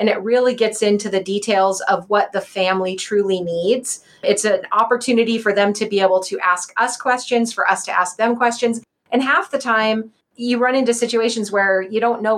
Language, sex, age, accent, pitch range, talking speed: English, female, 30-49, American, 200-240 Hz, 210 wpm